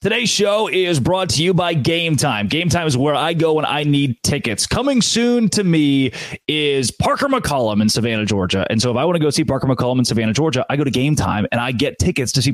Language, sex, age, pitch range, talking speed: English, male, 30-49, 120-165 Hz, 255 wpm